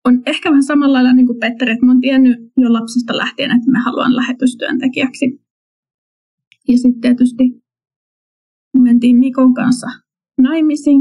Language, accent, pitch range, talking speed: Finnish, native, 240-260 Hz, 145 wpm